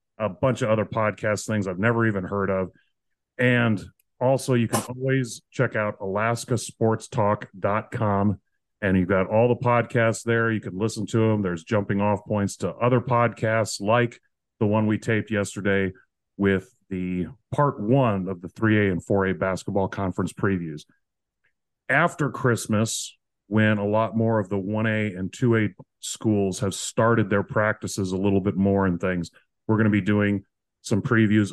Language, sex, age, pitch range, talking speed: English, male, 30-49, 100-120 Hz, 160 wpm